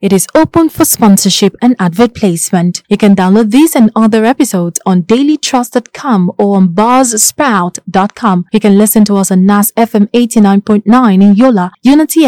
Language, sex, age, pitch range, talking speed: English, female, 20-39, 195-265 Hz, 155 wpm